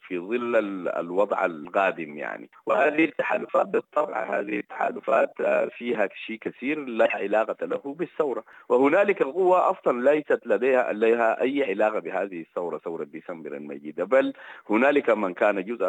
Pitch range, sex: 100-150 Hz, male